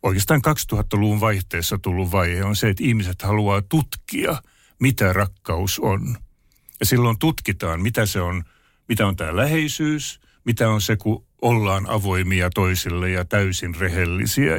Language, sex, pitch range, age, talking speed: Finnish, male, 95-120 Hz, 60-79, 140 wpm